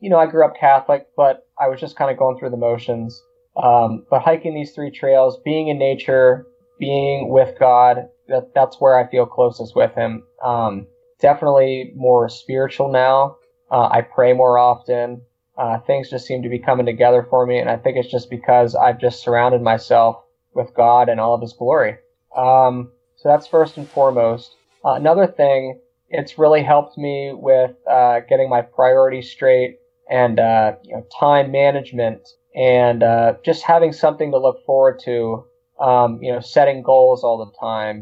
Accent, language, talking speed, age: American, English, 180 wpm, 20-39